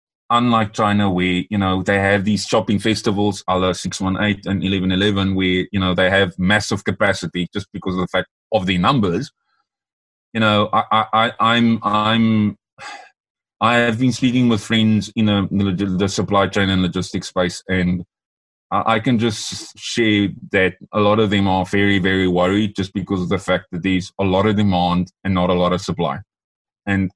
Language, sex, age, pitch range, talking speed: English, male, 30-49, 95-110 Hz, 180 wpm